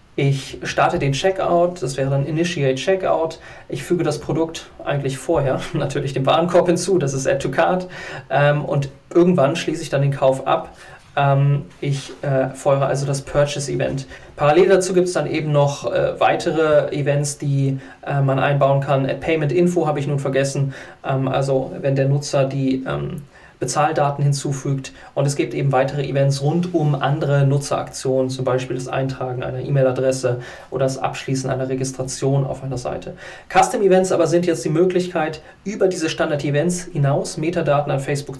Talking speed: 170 wpm